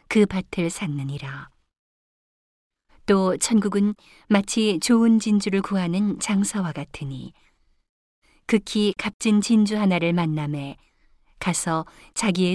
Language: Korean